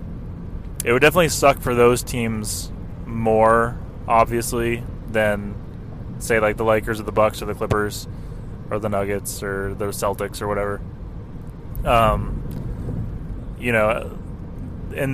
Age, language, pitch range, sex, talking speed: 20-39, English, 110-130 Hz, male, 125 wpm